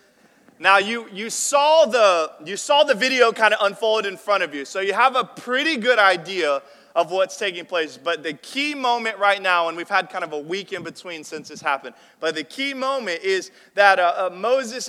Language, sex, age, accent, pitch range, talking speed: English, male, 30-49, American, 165-230 Hz, 215 wpm